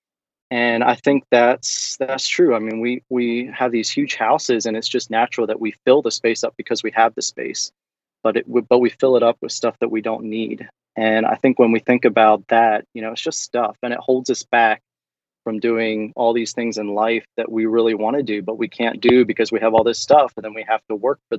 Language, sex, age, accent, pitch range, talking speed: English, male, 30-49, American, 110-120 Hz, 255 wpm